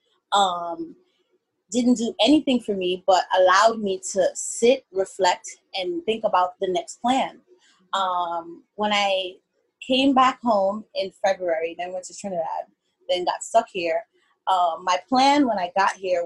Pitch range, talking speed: 190-295 Hz, 150 wpm